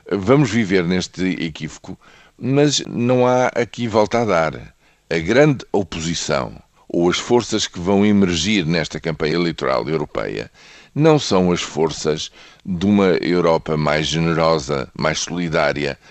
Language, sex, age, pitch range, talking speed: Portuguese, male, 50-69, 75-95 Hz, 130 wpm